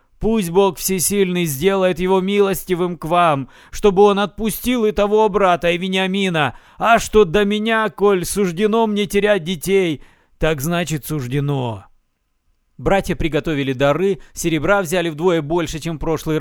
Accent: native